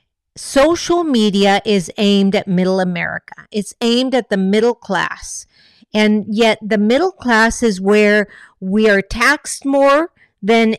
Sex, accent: female, American